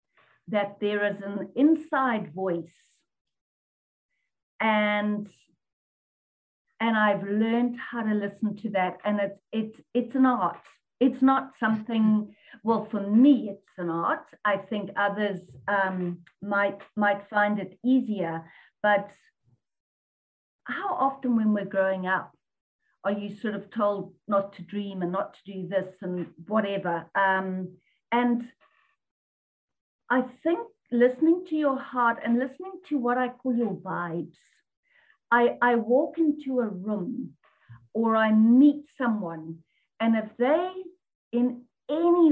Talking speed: 130 wpm